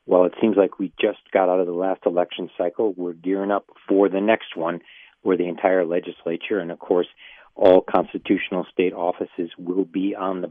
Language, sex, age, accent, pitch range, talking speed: English, male, 50-69, American, 90-100 Hz, 200 wpm